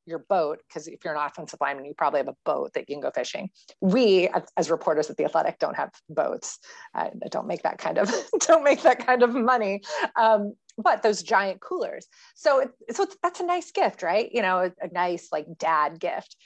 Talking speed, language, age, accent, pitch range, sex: 220 wpm, English, 30-49, American, 175-260 Hz, female